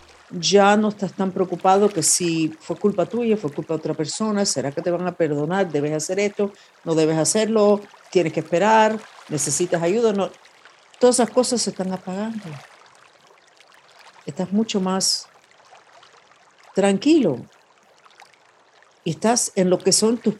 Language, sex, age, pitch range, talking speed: Spanish, female, 50-69, 165-210 Hz, 145 wpm